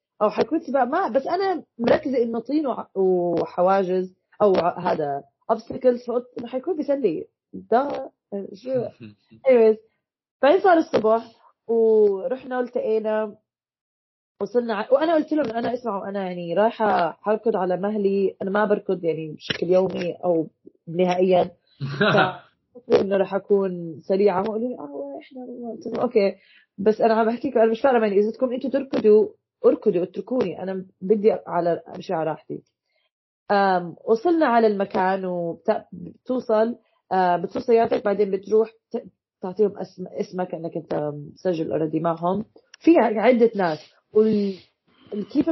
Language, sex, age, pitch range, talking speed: Arabic, female, 30-49, 185-235 Hz, 125 wpm